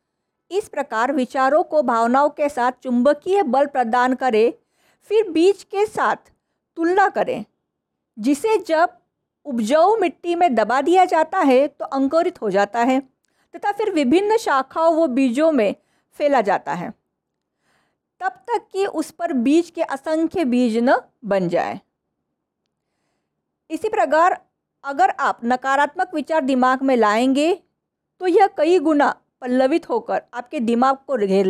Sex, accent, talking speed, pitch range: female, native, 140 wpm, 260-355 Hz